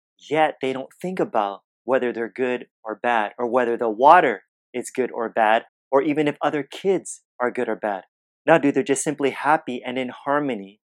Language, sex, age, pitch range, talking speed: English, male, 30-49, 115-140 Hz, 200 wpm